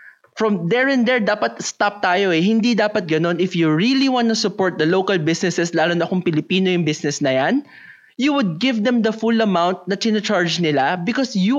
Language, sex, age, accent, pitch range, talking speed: English, male, 20-39, Filipino, 170-220 Hz, 205 wpm